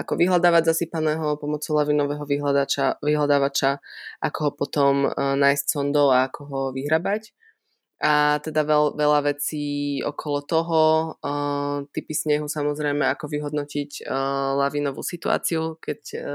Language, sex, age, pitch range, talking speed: Slovak, female, 20-39, 140-155 Hz, 105 wpm